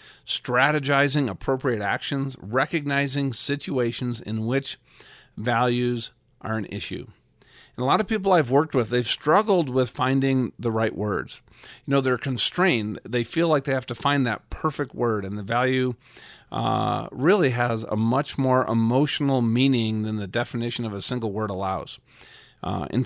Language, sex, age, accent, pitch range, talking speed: English, male, 50-69, American, 110-135 Hz, 160 wpm